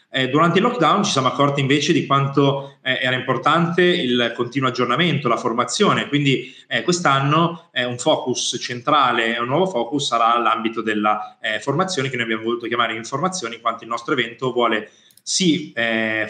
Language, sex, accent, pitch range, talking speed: Italian, male, native, 115-145 Hz, 175 wpm